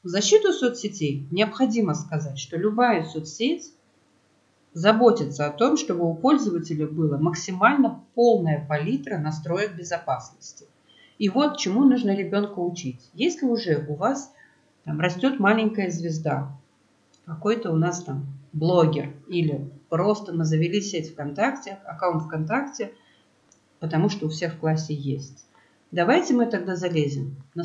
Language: Russian